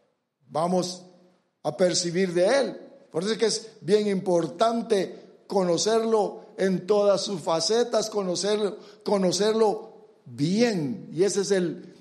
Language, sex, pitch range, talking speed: English, male, 180-235 Hz, 120 wpm